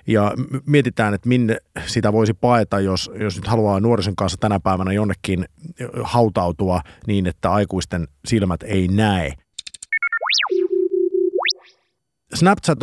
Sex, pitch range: male, 95-130 Hz